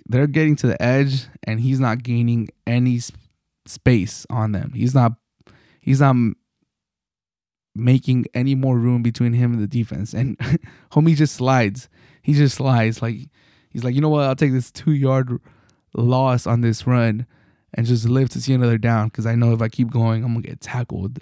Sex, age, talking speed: male, 20-39, 190 wpm